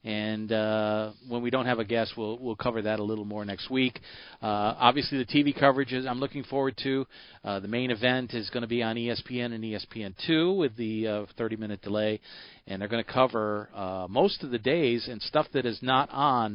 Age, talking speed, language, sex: 40-59, 220 wpm, English, male